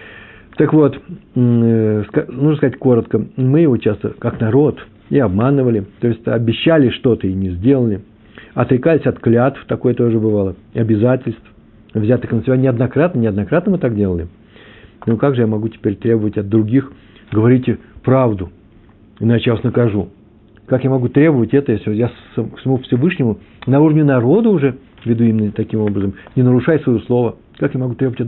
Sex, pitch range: male, 105-125 Hz